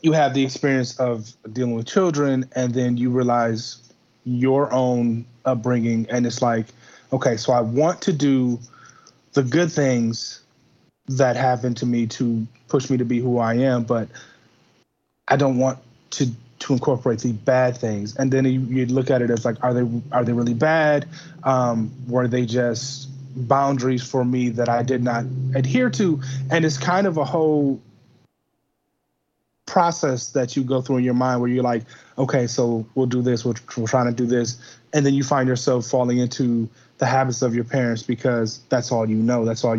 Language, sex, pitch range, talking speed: English, male, 120-130 Hz, 185 wpm